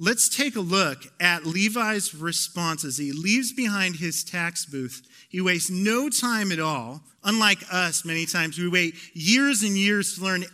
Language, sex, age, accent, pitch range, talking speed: English, male, 40-59, American, 135-190 Hz, 175 wpm